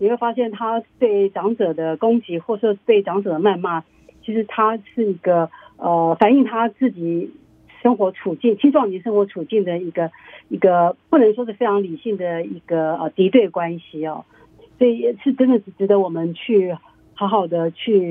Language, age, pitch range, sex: Chinese, 50-69, 175-240 Hz, female